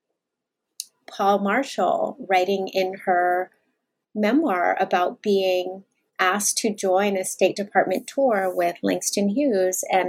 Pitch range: 195-255 Hz